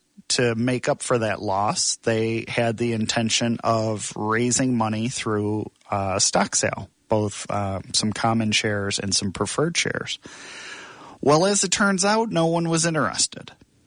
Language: English